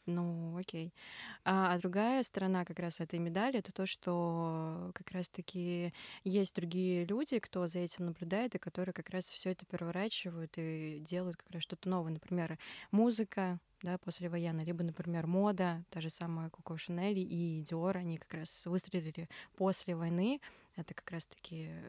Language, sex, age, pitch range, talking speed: Russian, female, 20-39, 170-195 Hz, 165 wpm